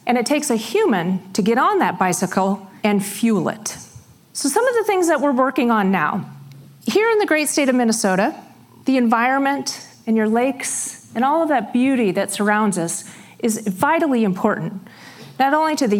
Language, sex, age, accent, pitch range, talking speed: English, female, 40-59, American, 200-275 Hz, 190 wpm